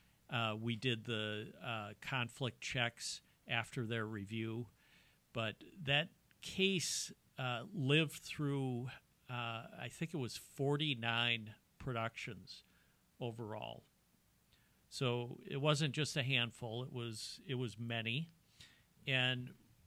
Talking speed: 105 wpm